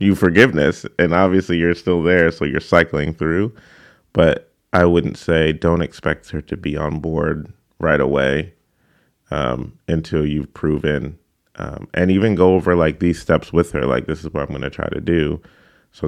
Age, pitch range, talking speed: 30-49, 75-85 Hz, 185 wpm